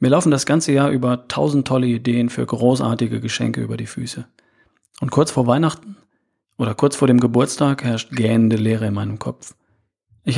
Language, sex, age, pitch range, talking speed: German, male, 40-59, 110-150 Hz, 180 wpm